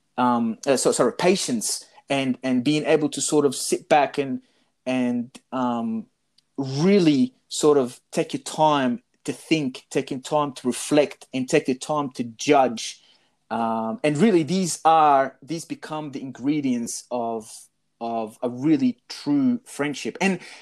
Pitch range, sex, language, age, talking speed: 125-175 Hz, male, English, 30-49, 150 wpm